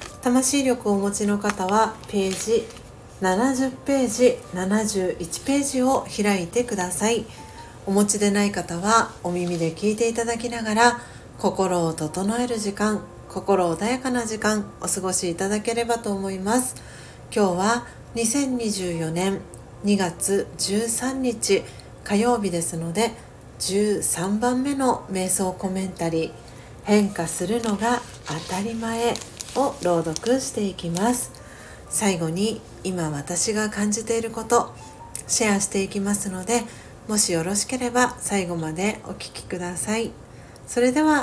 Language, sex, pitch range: Japanese, female, 185-235 Hz